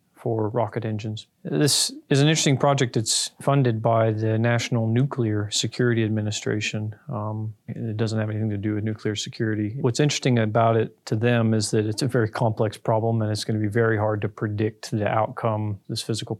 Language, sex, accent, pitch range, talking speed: English, male, American, 110-120 Hz, 185 wpm